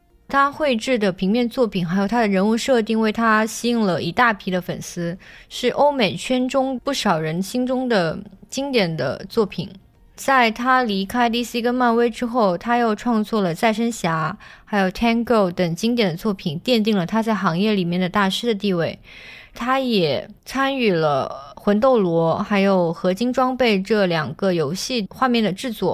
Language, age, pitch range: Chinese, 20-39, 190-245 Hz